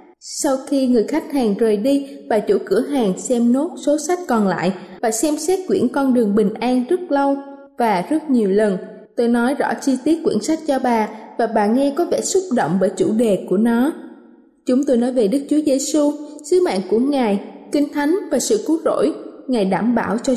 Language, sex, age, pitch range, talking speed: Vietnamese, female, 20-39, 220-290 Hz, 215 wpm